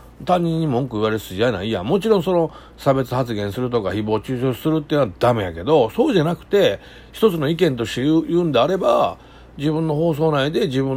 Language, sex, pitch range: Japanese, male, 115-170 Hz